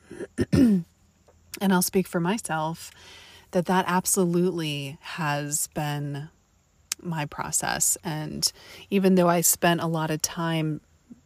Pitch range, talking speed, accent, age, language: 150-175 Hz, 110 wpm, American, 30-49, English